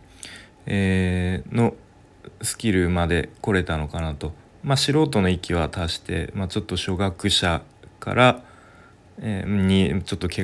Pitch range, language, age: 85-110 Hz, Japanese, 20-39